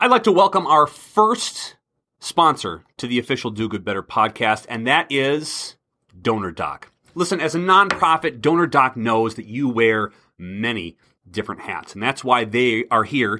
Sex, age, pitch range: male, 30-49, 115-165 Hz